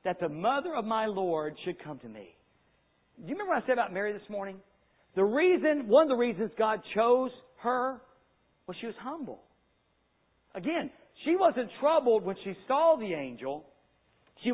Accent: American